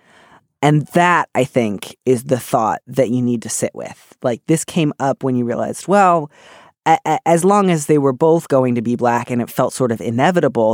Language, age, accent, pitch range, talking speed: English, 20-39, American, 135-180 Hz, 220 wpm